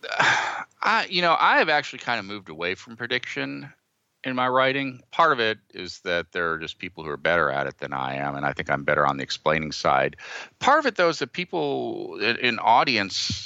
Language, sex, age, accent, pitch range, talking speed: English, male, 40-59, American, 85-120 Hz, 225 wpm